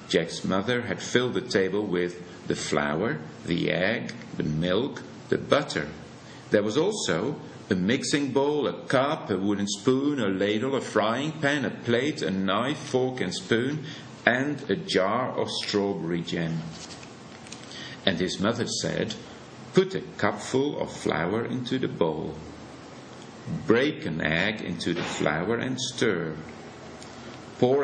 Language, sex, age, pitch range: Chinese, male, 50-69, 95-120 Hz